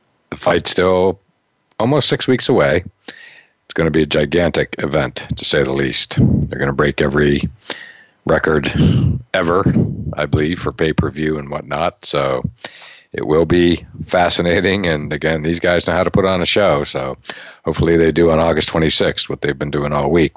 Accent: American